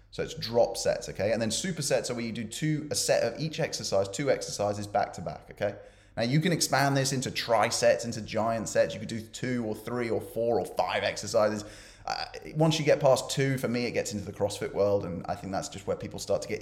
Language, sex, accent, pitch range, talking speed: English, male, British, 105-140 Hz, 255 wpm